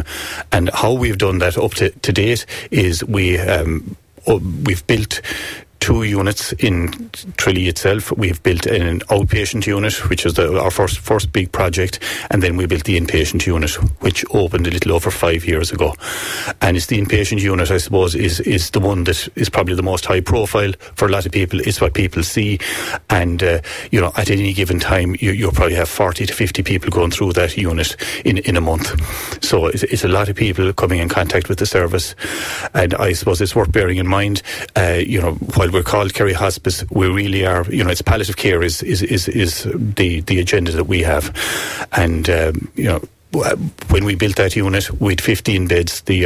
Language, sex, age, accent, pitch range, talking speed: English, male, 30-49, Irish, 85-100 Hz, 205 wpm